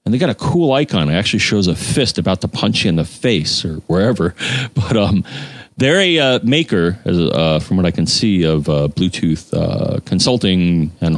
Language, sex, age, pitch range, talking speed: English, male, 40-59, 85-120 Hz, 205 wpm